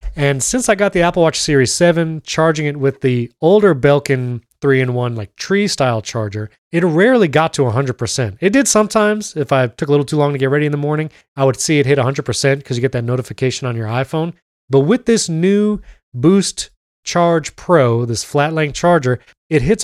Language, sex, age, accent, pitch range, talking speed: English, male, 30-49, American, 130-165 Hz, 200 wpm